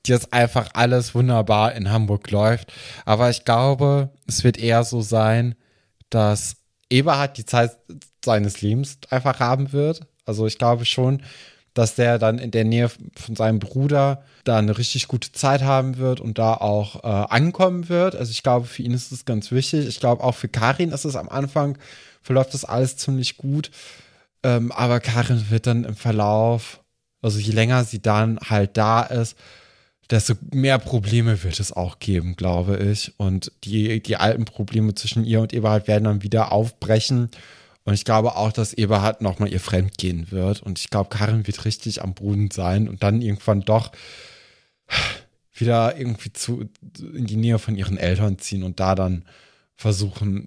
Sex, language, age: male, German, 20-39